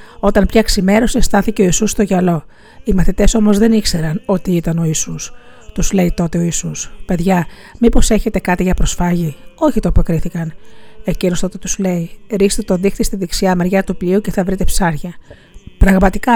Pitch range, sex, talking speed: 180-205 Hz, female, 170 wpm